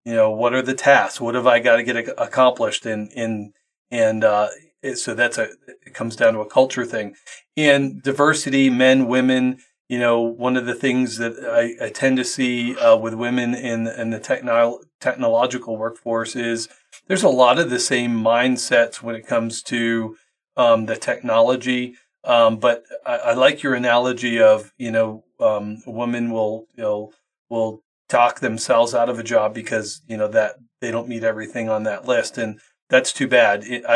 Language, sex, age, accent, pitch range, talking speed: English, male, 30-49, American, 115-135 Hz, 185 wpm